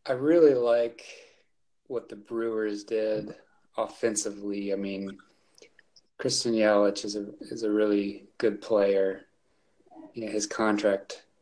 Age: 20-39